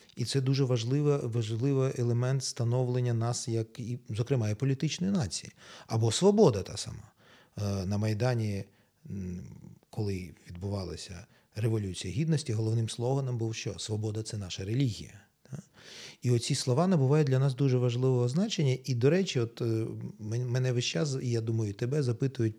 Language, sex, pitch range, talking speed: Ukrainian, male, 95-125 Hz, 145 wpm